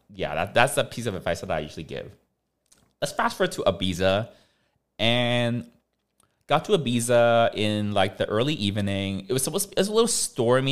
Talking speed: 190 wpm